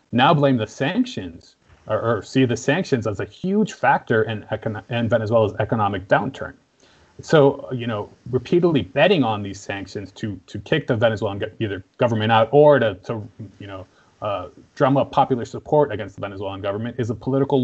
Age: 30-49